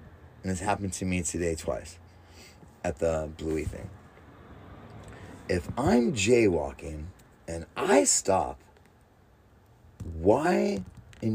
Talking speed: 100 wpm